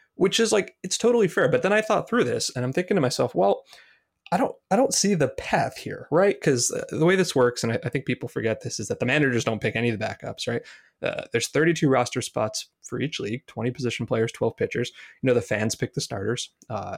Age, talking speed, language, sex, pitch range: 20-39, 255 wpm, English, male, 110-135 Hz